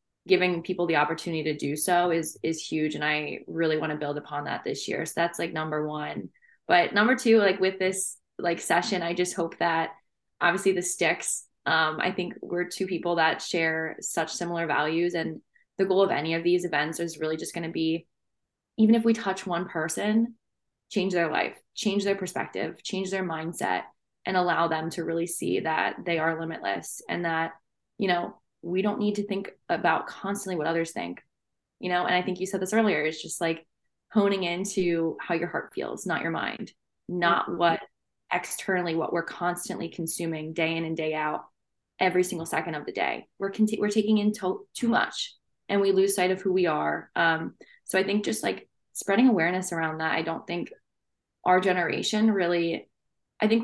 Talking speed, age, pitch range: 195 wpm, 20-39, 165-190 Hz